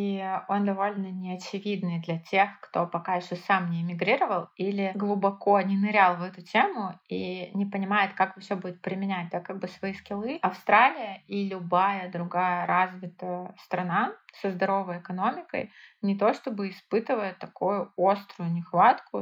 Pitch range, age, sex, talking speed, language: 185-205 Hz, 20-39, female, 145 wpm, Russian